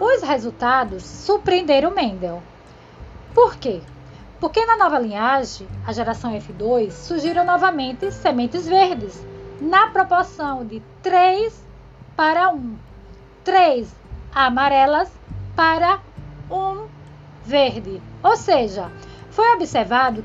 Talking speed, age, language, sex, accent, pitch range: 95 wpm, 20-39, Portuguese, female, Brazilian, 235-370 Hz